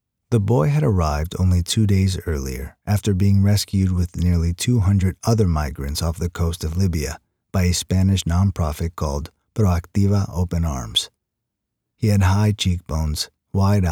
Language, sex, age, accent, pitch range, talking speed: English, male, 30-49, American, 85-105 Hz, 145 wpm